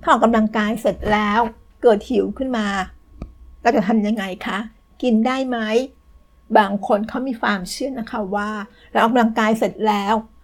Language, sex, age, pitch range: Thai, female, 60-79, 210-240 Hz